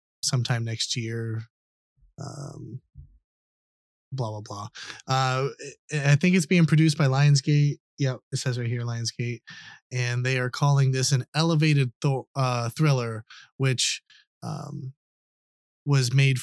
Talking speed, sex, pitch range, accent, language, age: 125 wpm, male, 115-145 Hz, American, English, 20-39